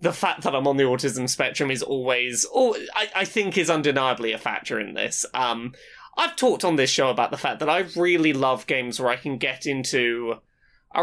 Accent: British